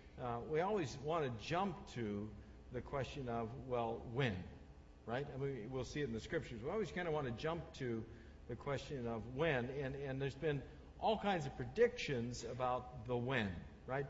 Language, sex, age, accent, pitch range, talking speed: English, male, 60-79, American, 120-155 Hz, 190 wpm